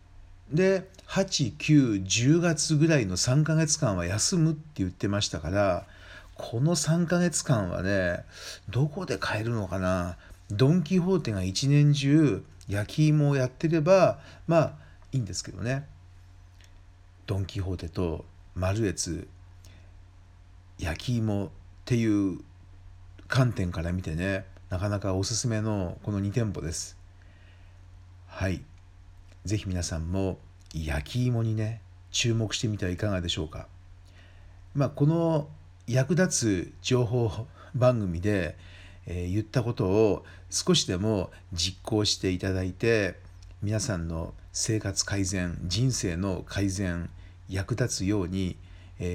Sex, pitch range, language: male, 90-115 Hz, Japanese